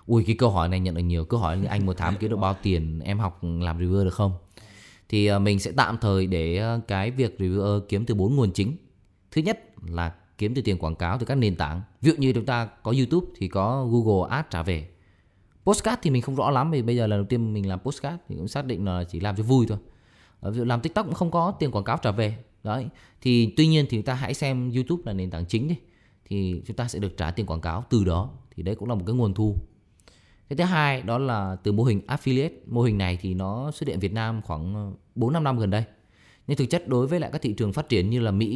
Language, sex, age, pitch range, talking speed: Vietnamese, male, 20-39, 95-125 Hz, 265 wpm